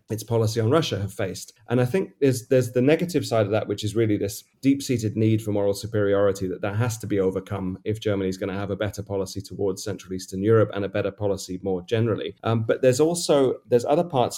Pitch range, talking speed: 100-115 Hz, 240 wpm